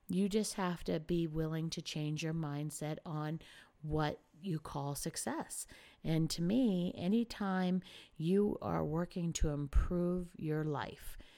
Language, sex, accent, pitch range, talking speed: English, female, American, 155-185 Hz, 135 wpm